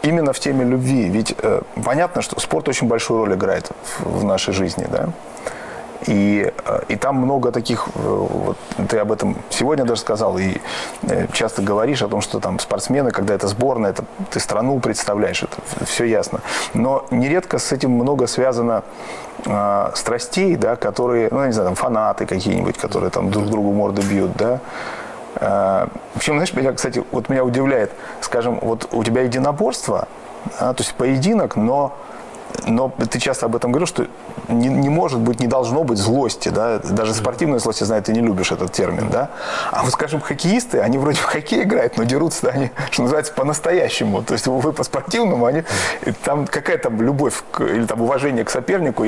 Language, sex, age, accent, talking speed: Russian, male, 30-49, native, 185 wpm